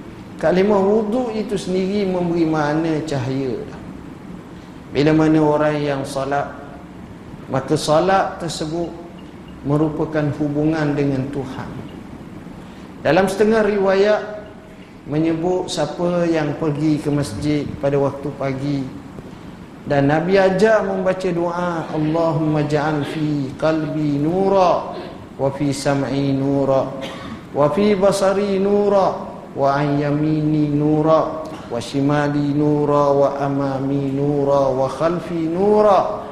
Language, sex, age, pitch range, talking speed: Malay, male, 50-69, 140-185 Hz, 100 wpm